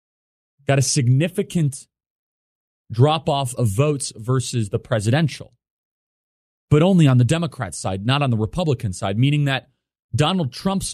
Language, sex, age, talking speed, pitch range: English, male, 30-49, 135 wpm, 110-140 Hz